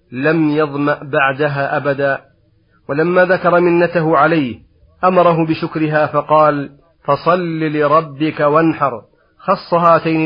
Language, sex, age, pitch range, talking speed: Arabic, male, 40-59, 145-165 Hz, 95 wpm